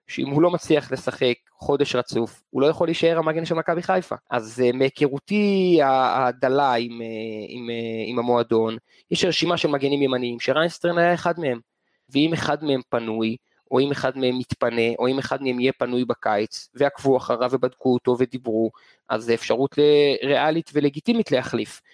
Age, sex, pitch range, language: 20-39, male, 125-160 Hz, Hebrew